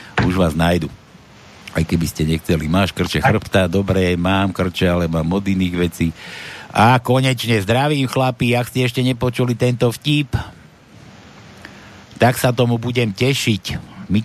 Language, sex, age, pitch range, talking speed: Slovak, male, 60-79, 100-140 Hz, 145 wpm